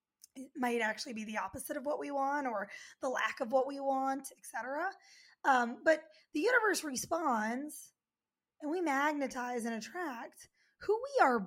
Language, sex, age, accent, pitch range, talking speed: English, female, 20-39, American, 245-305 Hz, 170 wpm